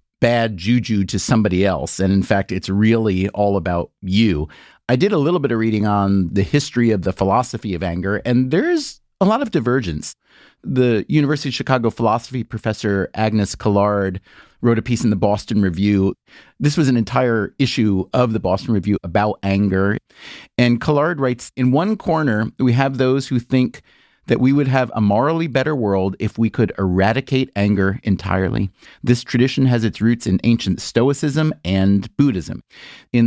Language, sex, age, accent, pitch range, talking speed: English, male, 30-49, American, 100-130 Hz, 175 wpm